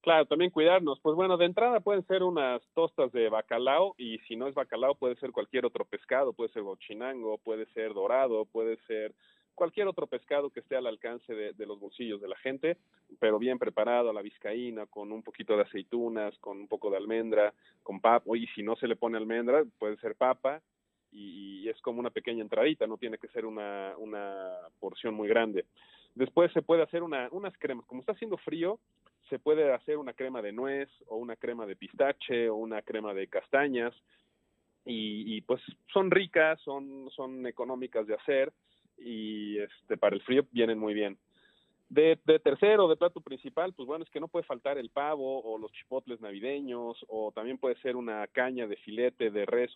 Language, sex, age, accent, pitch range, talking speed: Spanish, male, 40-59, Mexican, 110-175 Hz, 195 wpm